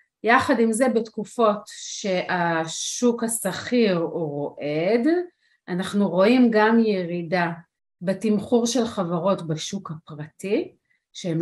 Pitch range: 170-230 Hz